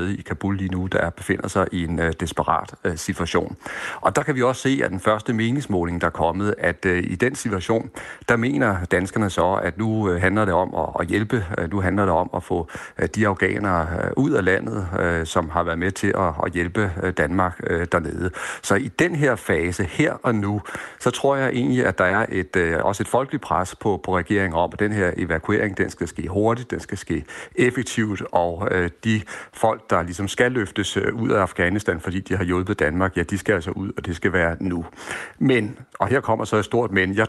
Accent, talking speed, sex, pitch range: native, 210 wpm, male, 90-105 Hz